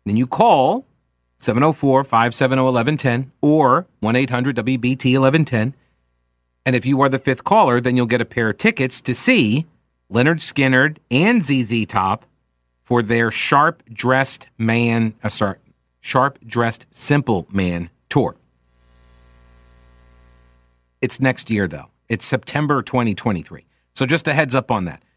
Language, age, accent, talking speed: English, 40-59, American, 115 wpm